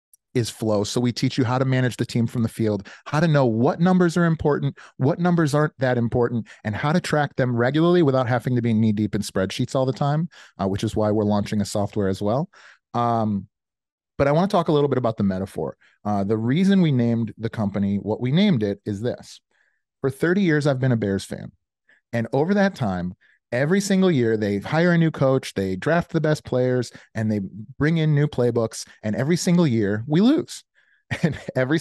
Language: English